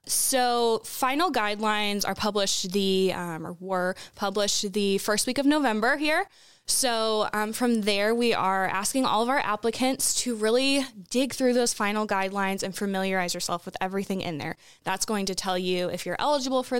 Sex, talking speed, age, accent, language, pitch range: female, 180 wpm, 10-29, American, English, 185-235 Hz